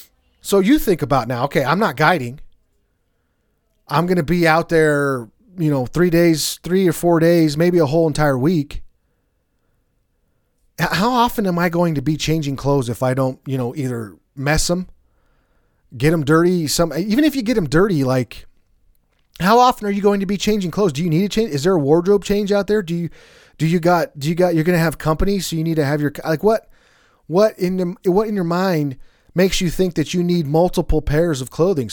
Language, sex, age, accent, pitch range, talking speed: English, male, 30-49, American, 140-185 Hz, 215 wpm